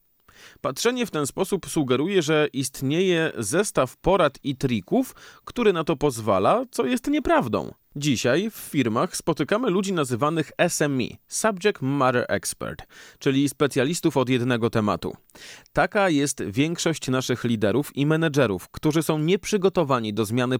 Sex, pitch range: male, 120-165 Hz